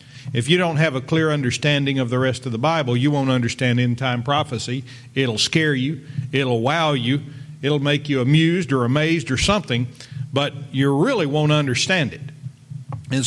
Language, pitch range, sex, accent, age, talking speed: English, 125-150 Hz, male, American, 50-69, 175 wpm